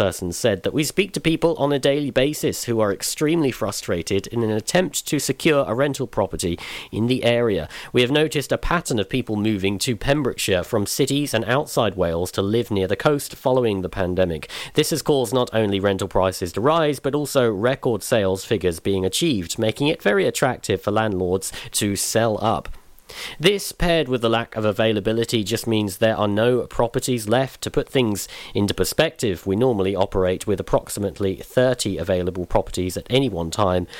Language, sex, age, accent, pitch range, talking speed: English, male, 40-59, British, 95-135 Hz, 185 wpm